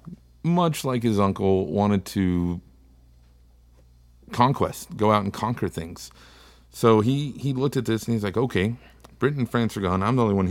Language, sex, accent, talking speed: English, male, American, 175 wpm